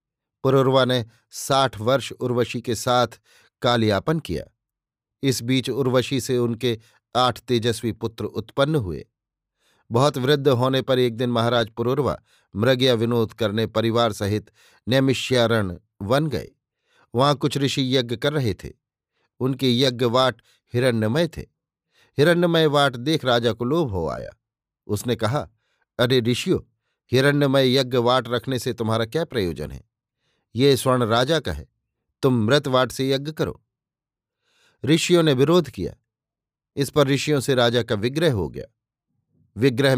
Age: 50-69